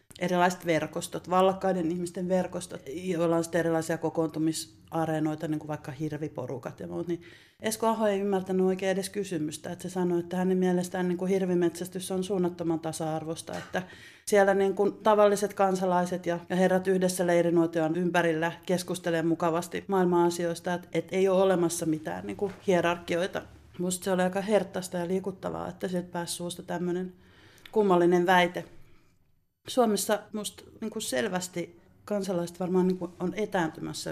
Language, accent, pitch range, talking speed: Finnish, native, 170-185 Hz, 140 wpm